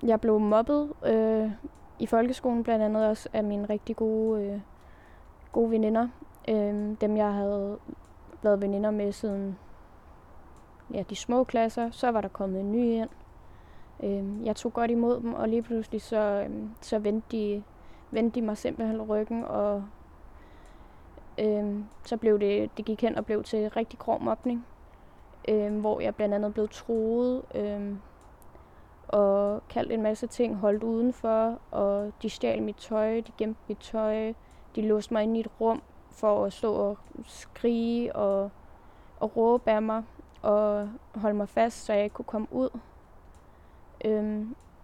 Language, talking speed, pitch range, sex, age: Danish, 160 wpm, 205-230 Hz, female, 20-39